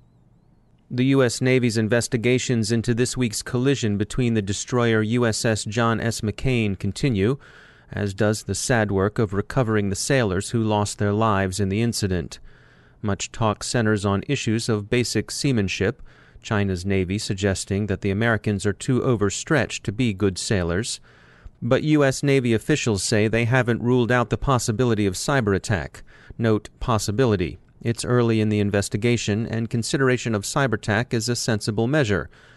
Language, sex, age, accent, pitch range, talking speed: English, male, 30-49, American, 100-125 Hz, 150 wpm